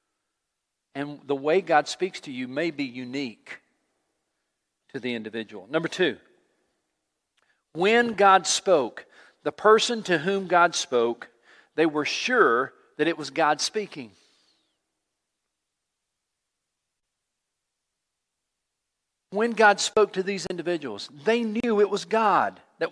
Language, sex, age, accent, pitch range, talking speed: English, male, 50-69, American, 160-210 Hz, 115 wpm